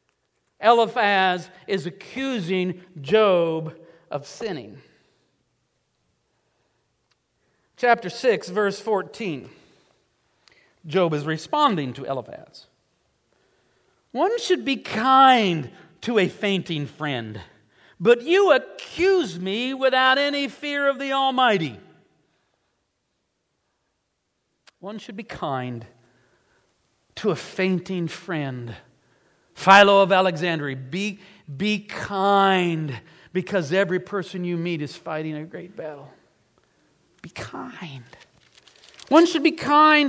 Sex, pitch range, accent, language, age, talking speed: male, 175-240 Hz, American, English, 50-69, 95 wpm